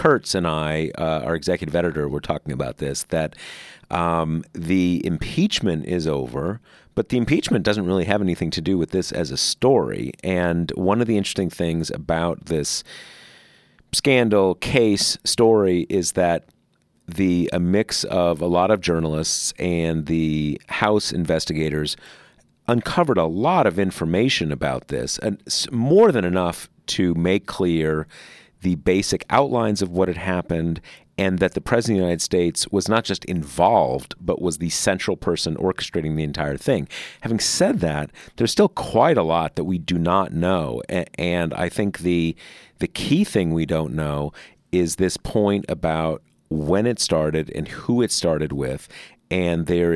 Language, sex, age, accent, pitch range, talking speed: English, male, 40-59, American, 80-95 Hz, 160 wpm